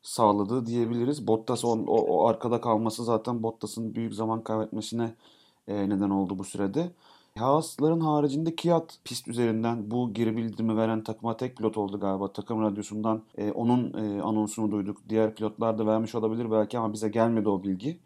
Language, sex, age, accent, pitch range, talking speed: Turkish, male, 30-49, native, 110-120 Hz, 165 wpm